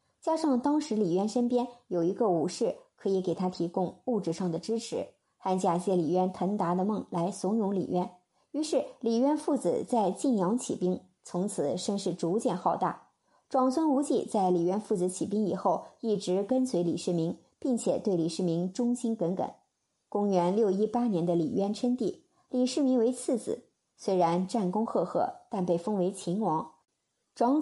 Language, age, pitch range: Chinese, 50-69, 180-245 Hz